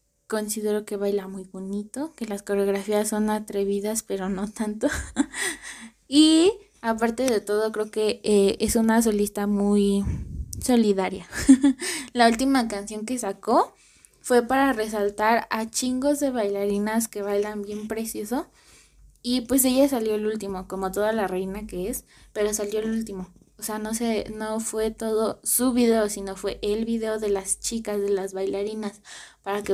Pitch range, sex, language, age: 200-225 Hz, female, Spanish, 20-39